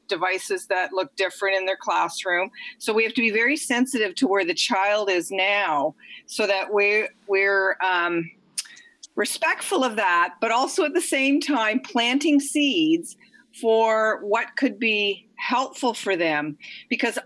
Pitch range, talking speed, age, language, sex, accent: 195-255 Hz, 155 wpm, 50-69, English, female, American